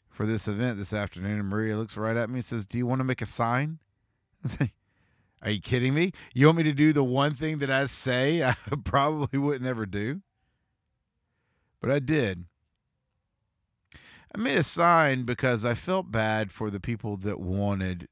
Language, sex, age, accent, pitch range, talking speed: English, male, 40-59, American, 95-130 Hz, 180 wpm